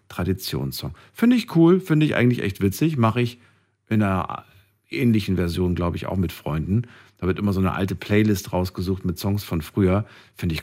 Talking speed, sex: 190 wpm, male